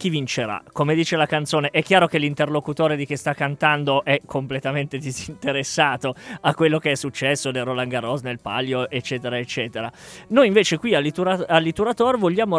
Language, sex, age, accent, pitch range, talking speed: Italian, male, 20-39, native, 135-180 Hz, 170 wpm